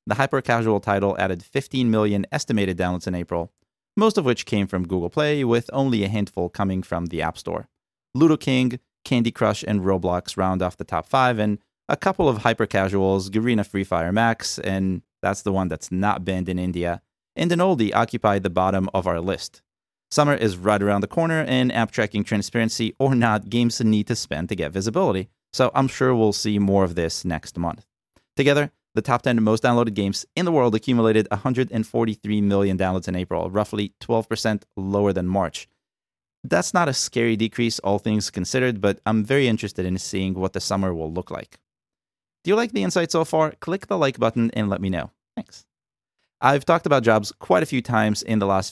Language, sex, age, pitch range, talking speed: English, male, 30-49, 95-120 Hz, 200 wpm